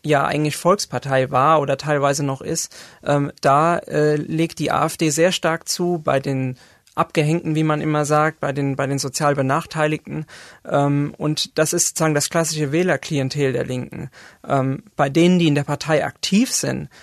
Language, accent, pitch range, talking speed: German, German, 140-165 Hz, 170 wpm